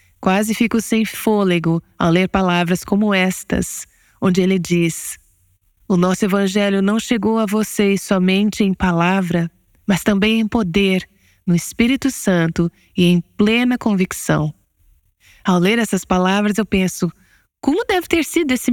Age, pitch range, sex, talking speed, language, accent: 20-39, 175-225 Hz, female, 140 wpm, Portuguese, Brazilian